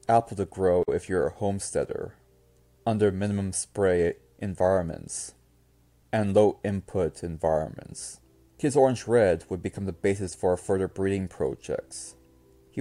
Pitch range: 80-105 Hz